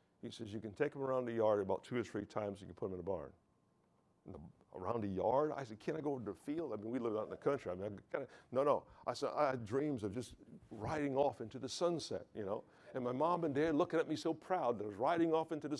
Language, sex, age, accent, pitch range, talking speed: English, male, 60-79, American, 105-150 Hz, 305 wpm